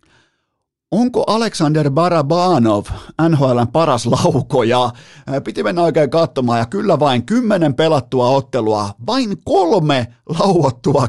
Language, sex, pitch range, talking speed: Finnish, male, 120-165 Hz, 105 wpm